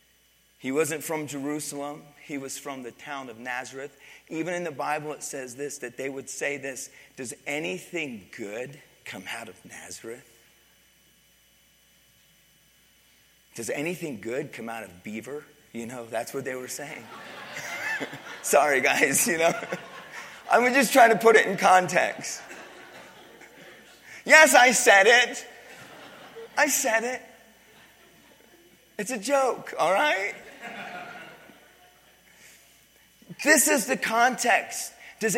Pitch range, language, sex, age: 145-215 Hz, English, male, 30-49